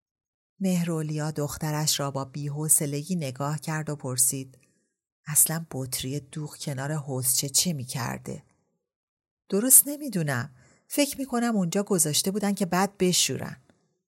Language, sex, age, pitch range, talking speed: Persian, female, 40-59, 140-180 Hz, 110 wpm